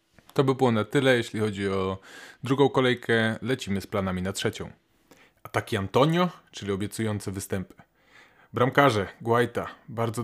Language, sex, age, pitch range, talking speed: Polish, male, 20-39, 100-115 Hz, 140 wpm